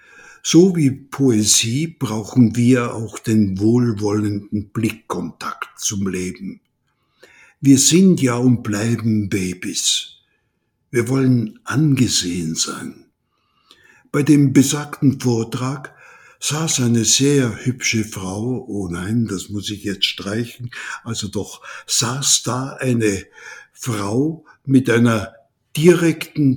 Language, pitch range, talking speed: German, 110-140 Hz, 105 wpm